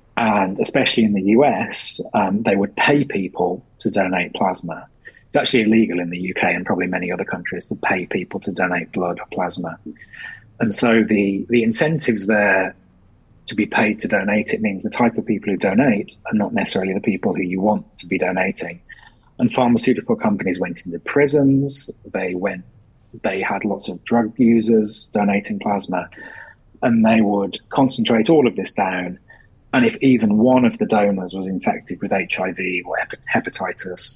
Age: 30-49